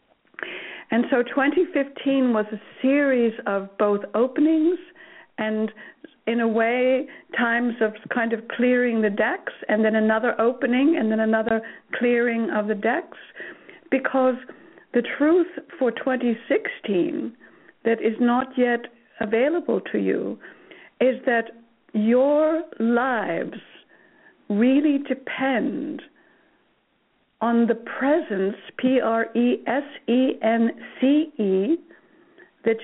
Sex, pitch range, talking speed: female, 230-295 Hz, 110 wpm